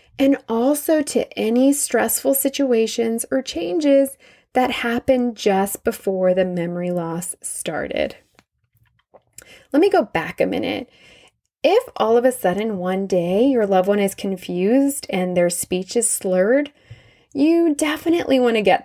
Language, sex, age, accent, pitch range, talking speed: English, female, 20-39, American, 185-270 Hz, 140 wpm